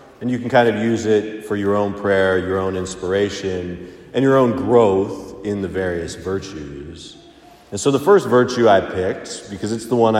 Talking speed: 195 wpm